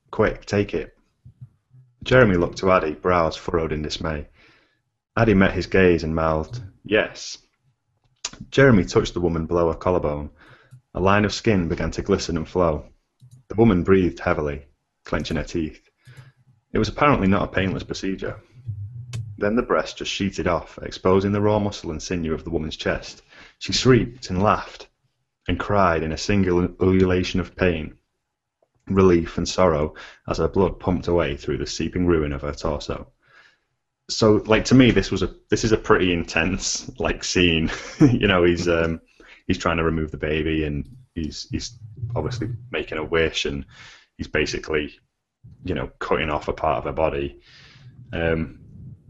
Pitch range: 85-115 Hz